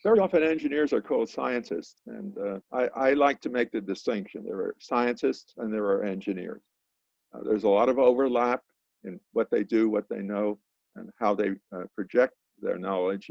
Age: 50-69